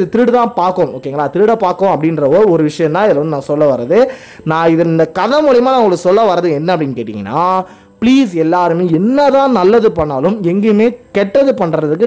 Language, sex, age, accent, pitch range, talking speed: Tamil, male, 20-39, native, 160-225 Hz, 65 wpm